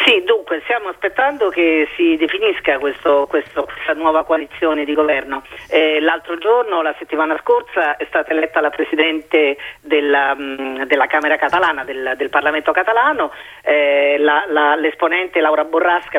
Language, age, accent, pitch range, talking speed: Italian, 40-59, native, 150-200 Hz, 150 wpm